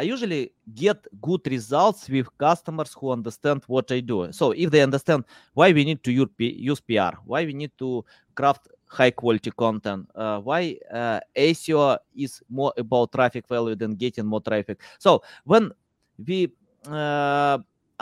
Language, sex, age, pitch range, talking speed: English, male, 20-39, 130-165 Hz, 155 wpm